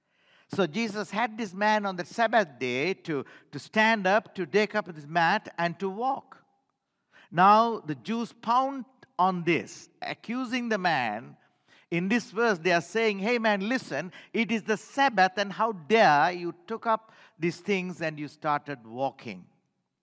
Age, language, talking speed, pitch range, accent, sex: 50-69, English, 165 wpm, 160-215 Hz, Indian, male